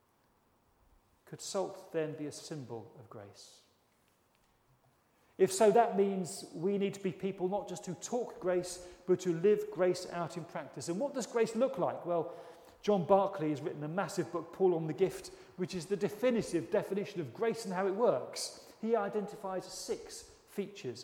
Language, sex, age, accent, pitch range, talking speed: English, male, 40-59, British, 170-210 Hz, 175 wpm